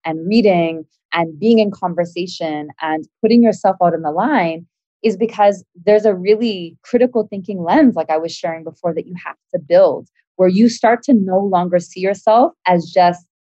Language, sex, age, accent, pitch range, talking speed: English, female, 20-39, American, 165-200 Hz, 180 wpm